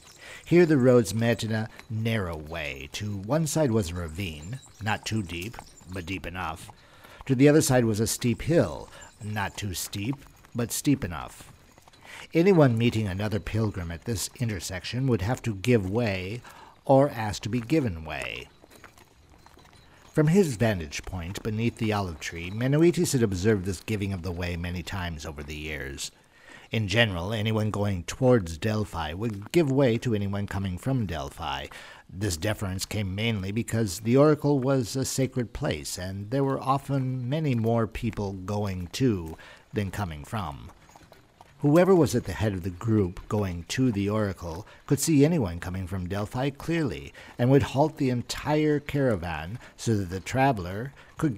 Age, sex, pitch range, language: 50-69, male, 95-130 Hz, English